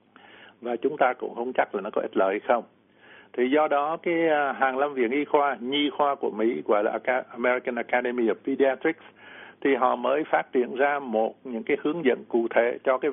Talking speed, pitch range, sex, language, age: 215 wpm, 115-140 Hz, male, Vietnamese, 60-79